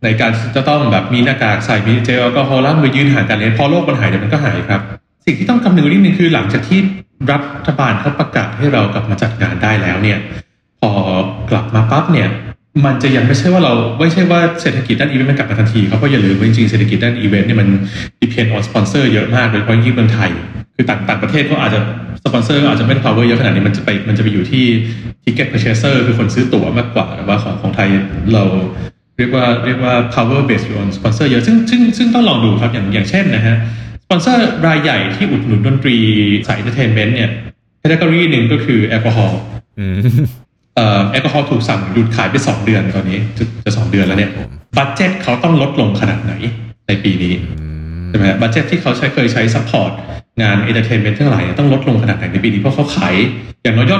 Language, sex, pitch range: Thai, male, 105-135 Hz